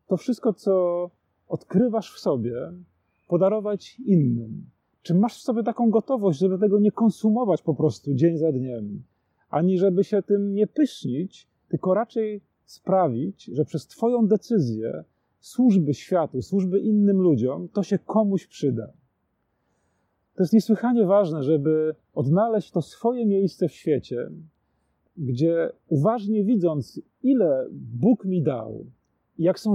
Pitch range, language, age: 150-205 Hz, Polish, 40-59